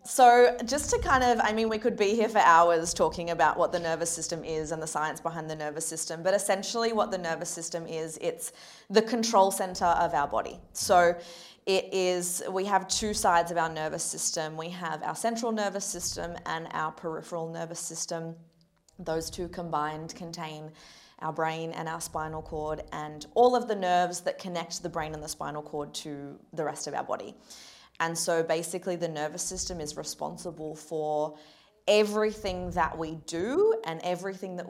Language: English